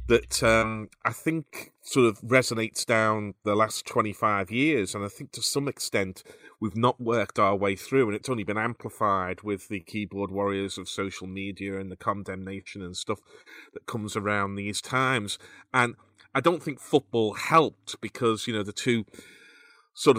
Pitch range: 100-120 Hz